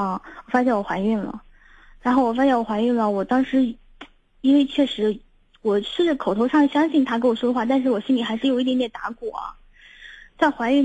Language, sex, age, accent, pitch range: Chinese, female, 20-39, native, 215-255 Hz